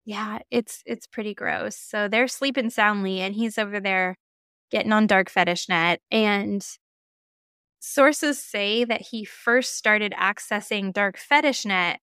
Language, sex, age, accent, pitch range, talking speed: English, female, 10-29, American, 195-235 Hz, 145 wpm